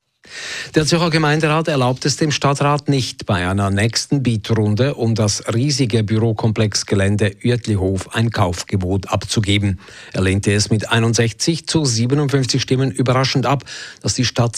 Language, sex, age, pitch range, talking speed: German, male, 50-69, 105-130 Hz, 140 wpm